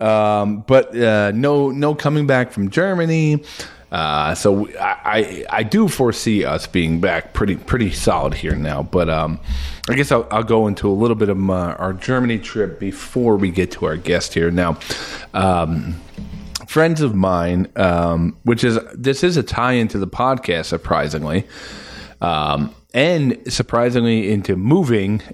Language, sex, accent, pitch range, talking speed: English, male, American, 85-120 Hz, 160 wpm